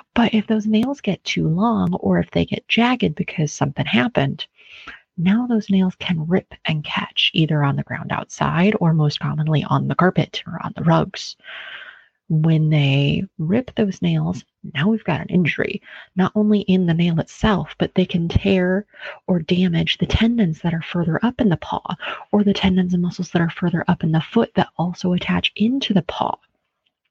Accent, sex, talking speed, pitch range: American, female, 190 wpm, 170-215 Hz